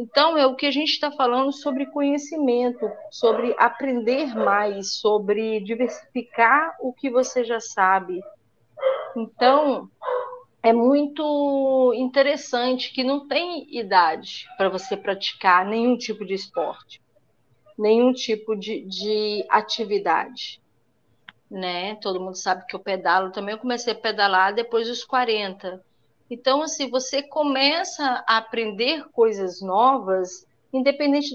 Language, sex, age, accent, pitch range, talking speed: Portuguese, female, 40-59, Brazilian, 200-270 Hz, 125 wpm